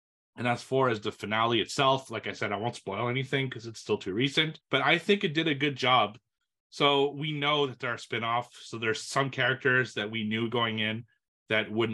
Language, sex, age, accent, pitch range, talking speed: English, male, 30-49, American, 105-130 Hz, 225 wpm